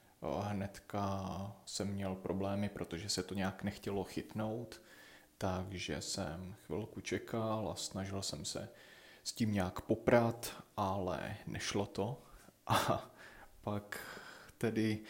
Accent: native